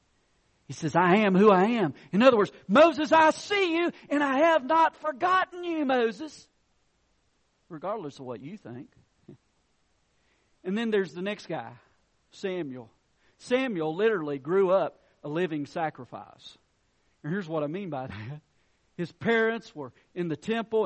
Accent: American